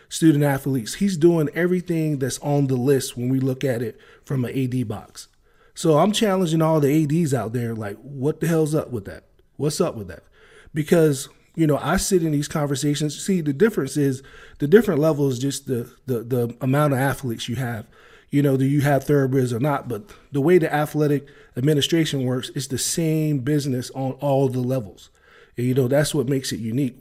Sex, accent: male, American